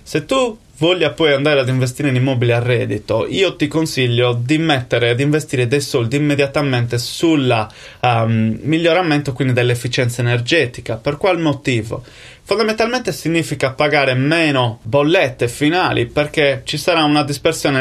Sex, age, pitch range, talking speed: male, 20-39, 125-150 Hz, 140 wpm